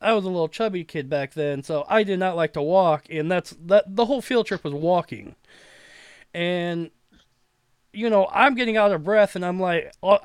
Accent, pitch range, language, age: American, 150-220 Hz, English, 20-39